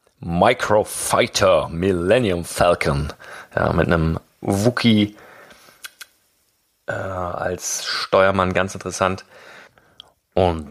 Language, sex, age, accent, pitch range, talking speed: German, male, 40-59, German, 95-115 Hz, 80 wpm